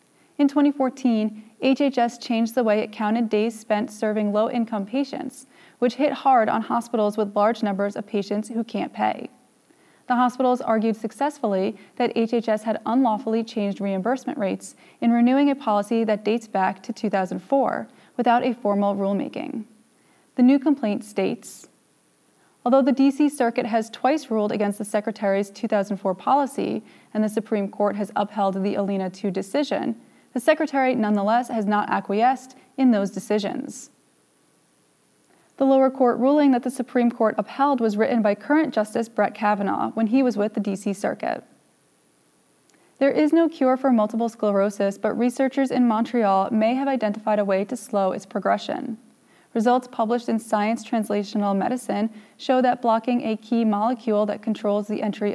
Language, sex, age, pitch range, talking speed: English, female, 20-39, 210-255 Hz, 155 wpm